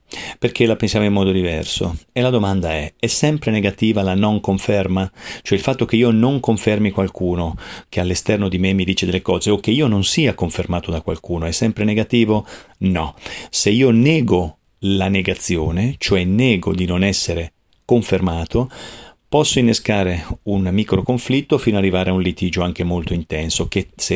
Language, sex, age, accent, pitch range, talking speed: Italian, male, 40-59, native, 90-115 Hz, 175 wpm